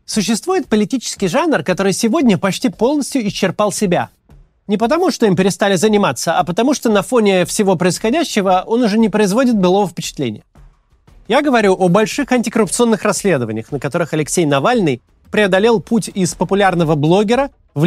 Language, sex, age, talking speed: Russian, male, 30-49, 150 wpm